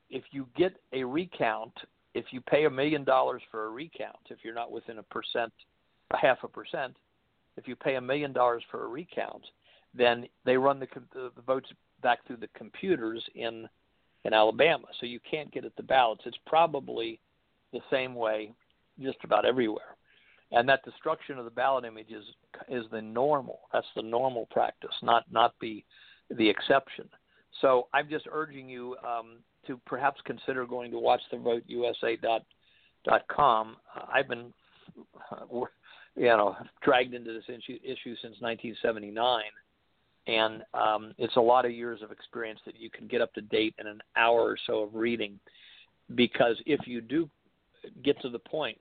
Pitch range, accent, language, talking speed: 110-130 Hz, American, English, 175 wpm